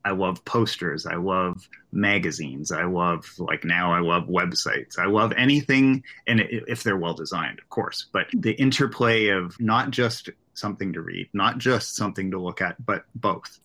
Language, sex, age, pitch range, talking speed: English, male, 30-49, 90-110 Hz, 170 wpm